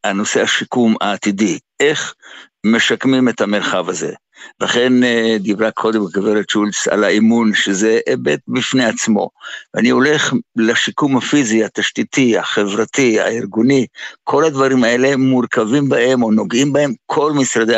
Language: Hebrew